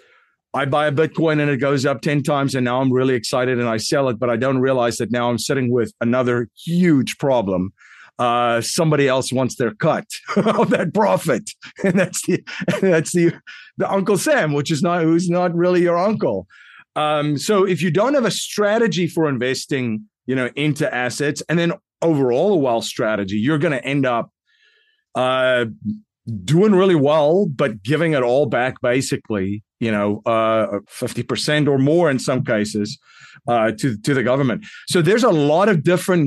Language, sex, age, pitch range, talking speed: English, male, 40-59, 125-165 Hz, 185 wpm